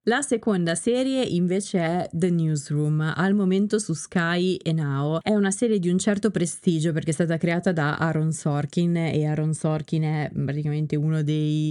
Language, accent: Italian, native